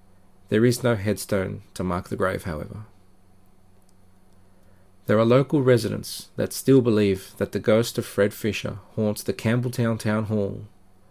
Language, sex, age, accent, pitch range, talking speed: English, male, 40-59, Australian, 95-110 Hz, 145 wpm